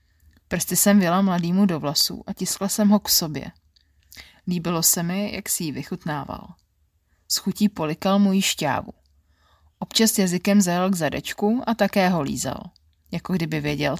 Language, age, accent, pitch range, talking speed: Czech, 30-49, native, 140-200 Hz, 160 wpm